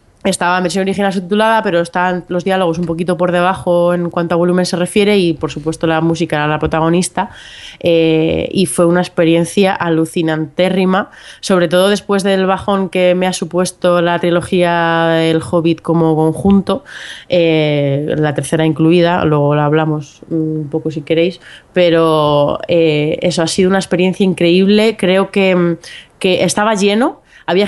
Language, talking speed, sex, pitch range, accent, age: Spanish, 160 wpm, female, 160-190 Hz, Spanish, 20-39